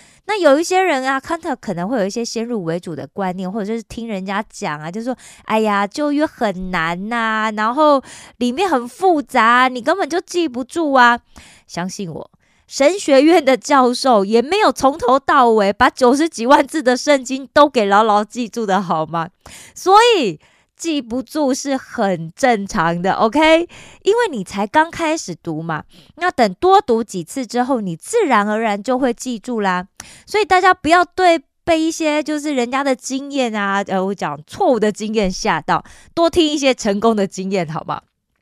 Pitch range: 200-305 Hz